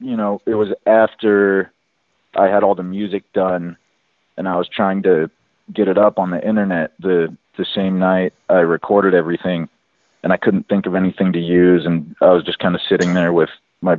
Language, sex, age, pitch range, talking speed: English, male, 30-49, 90-105 Hz, 200 wpm